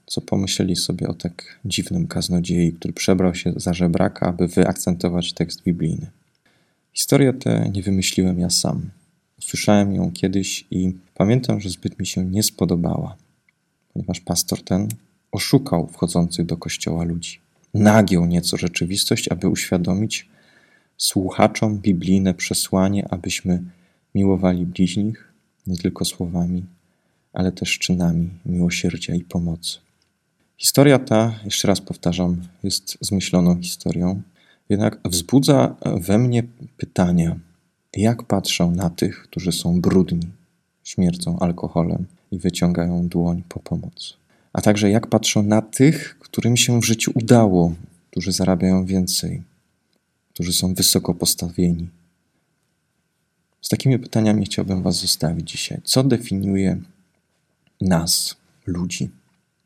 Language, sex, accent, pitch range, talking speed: Polish, male, native, 85-105 Hz, 120 wpm